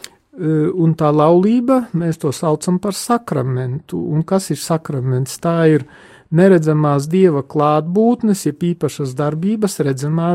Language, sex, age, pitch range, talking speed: English, male, 40-59, 150-195 Hz, 115 wpm